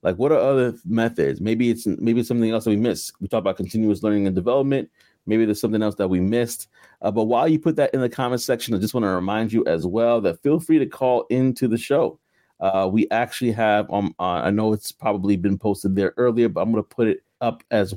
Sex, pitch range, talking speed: male, 105-125 Hz, 255 wpm